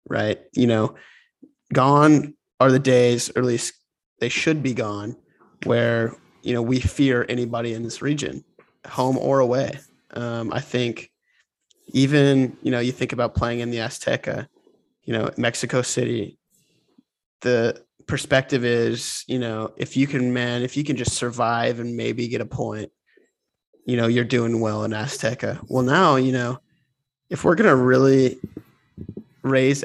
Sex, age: male, 20-39